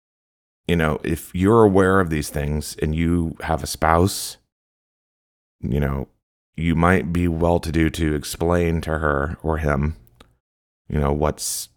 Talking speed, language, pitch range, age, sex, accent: 145 wpm, English, 75-90 Hz, 30-49, male, American